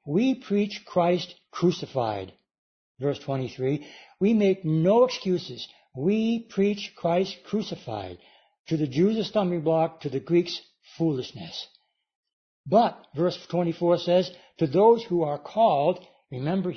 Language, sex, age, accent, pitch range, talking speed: English, male, 60-79, American, 155-195 Hz, 120 wpm